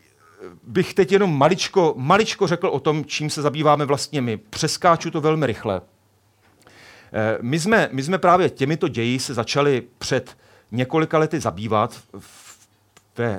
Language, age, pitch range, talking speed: Czech, 40-59, 120-190 Hz, 135 wpm